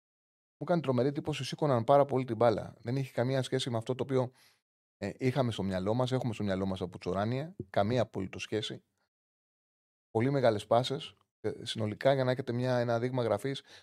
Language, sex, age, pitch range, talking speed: Greek, male, 30-49, 110-140 Hz, 180 wpm